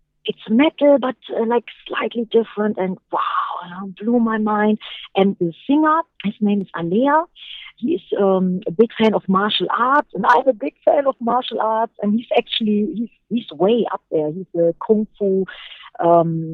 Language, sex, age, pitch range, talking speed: English, female, 40-59, 180-230 Hz, 180 wpm